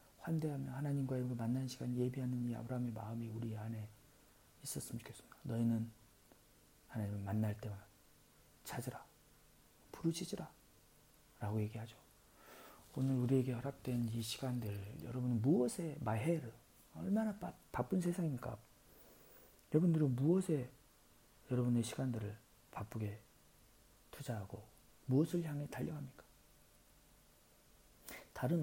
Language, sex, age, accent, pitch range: Korean, male, 40-59, native, 110-140 Hz